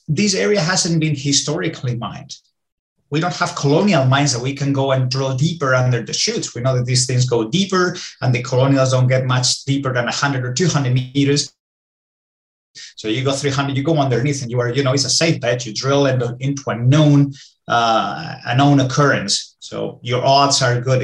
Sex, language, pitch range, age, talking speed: male, English, 125-150 Hz, 30-49, 205 wpm